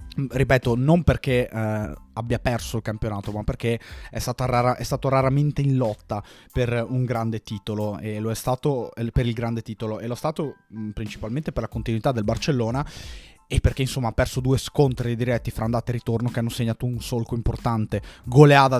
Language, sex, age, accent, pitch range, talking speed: Italian, male, 20-39, native, 105-125 Hz, 190 wpm